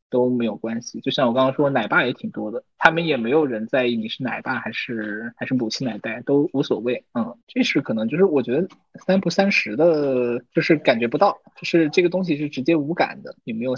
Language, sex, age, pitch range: Chinese, male, 20-39, 125-165 Hz